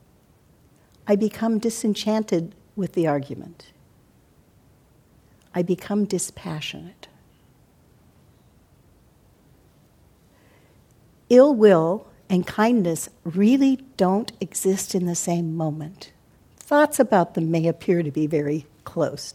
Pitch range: 170-235 Hz